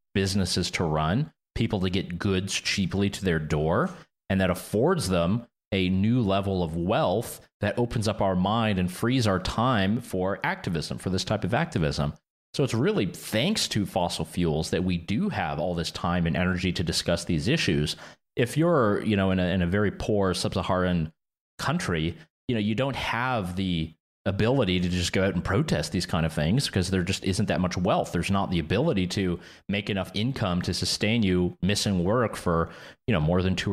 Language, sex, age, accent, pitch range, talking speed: English, male, 30-49, American, 85-105 Hz, 195 wpm